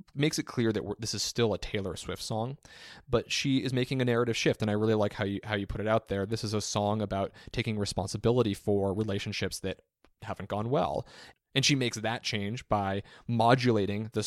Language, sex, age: English, male, 20-39